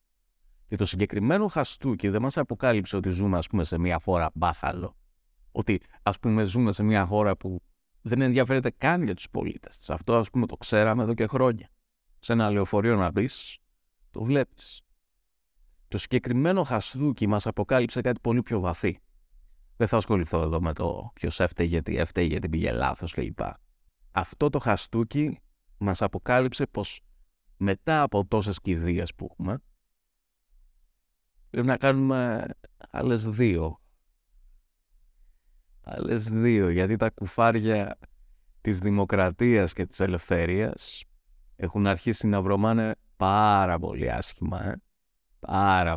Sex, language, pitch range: male, Greek, 85-115 Hz